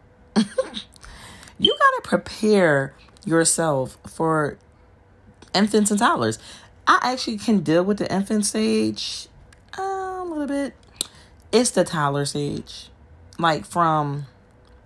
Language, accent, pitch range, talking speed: English, American, 130-195 Hz, 100 wpm